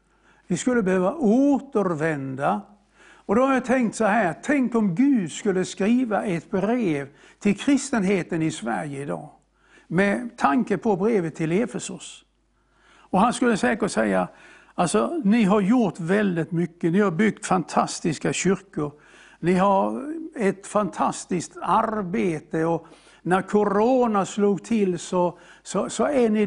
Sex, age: male, 60-79